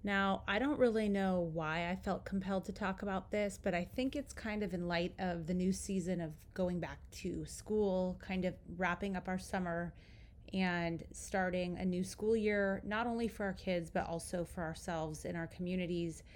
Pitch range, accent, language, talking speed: 170-195 Hz, American, English, 200 wpm